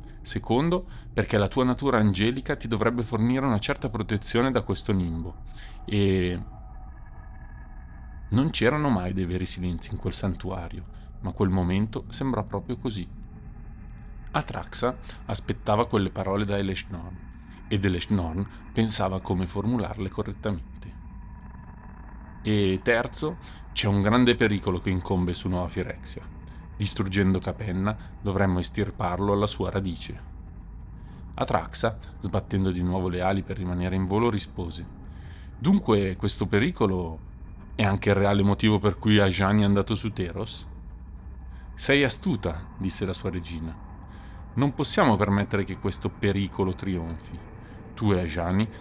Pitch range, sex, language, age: 90-110 Hz, male, Italian, 30-49